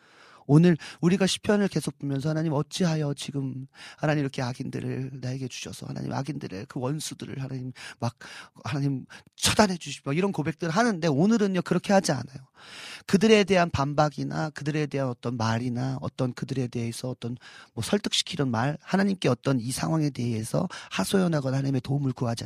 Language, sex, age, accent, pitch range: Korean, male, 40-59, native, 130-175 Hz